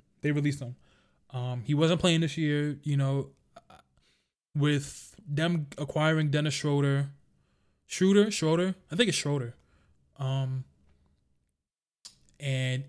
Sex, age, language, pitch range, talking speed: male, 20-39, English, 130-155 Hz, 110 wpm